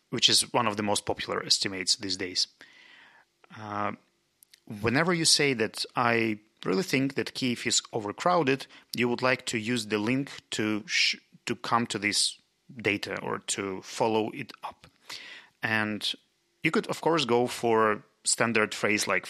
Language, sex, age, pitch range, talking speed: Russian, male, 30-49, 105-135 Hz, 160 wpm